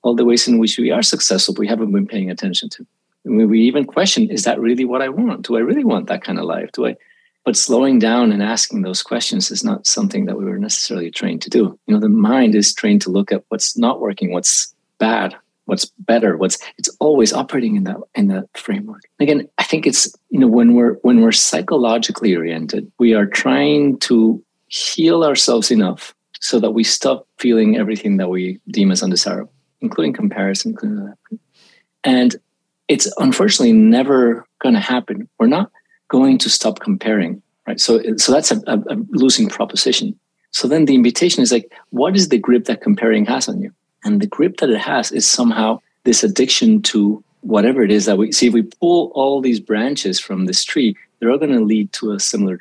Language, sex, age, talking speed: English, male, 30-49, 205 wpm